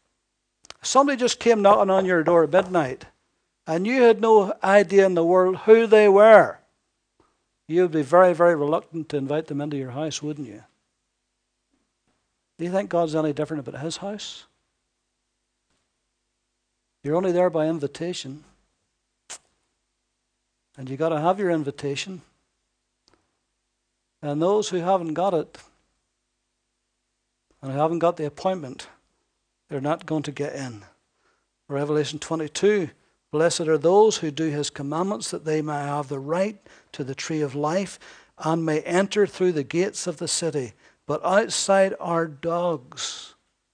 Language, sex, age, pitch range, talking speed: English, male, 60-79, 145-180 Hz, 145 wpm